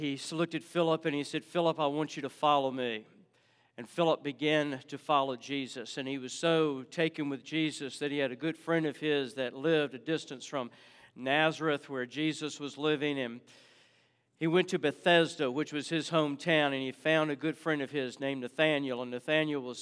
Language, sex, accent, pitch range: English, male, American, 140-165 Hz